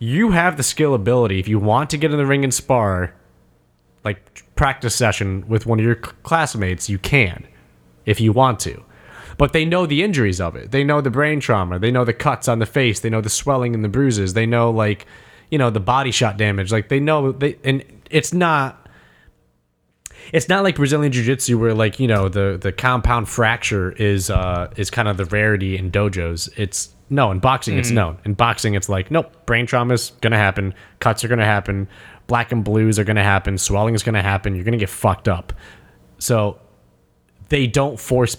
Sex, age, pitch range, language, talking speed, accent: male, 20-39, 95-130 Hz, English, 205 wpm, American